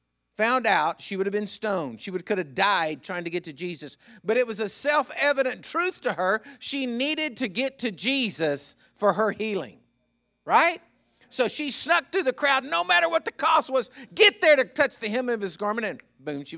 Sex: male